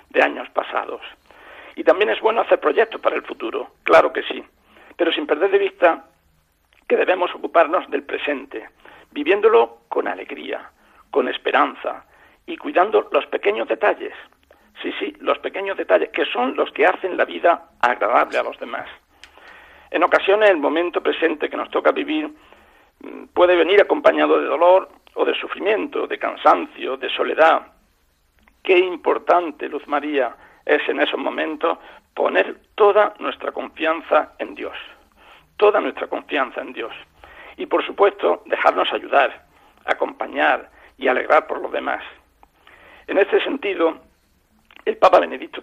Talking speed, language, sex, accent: 140 wpm, Spanish, male, Spanish